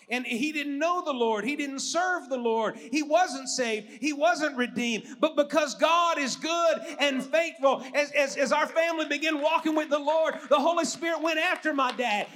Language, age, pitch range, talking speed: English, 40-59, 235-310 Hz, 200 wpm